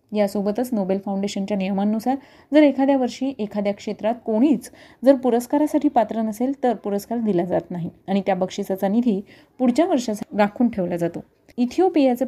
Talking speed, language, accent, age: 140 wpm, Marathi, native, 30-49